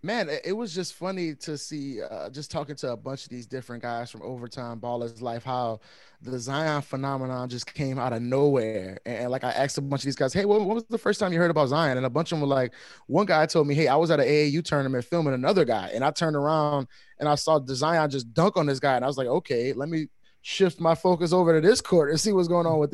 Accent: American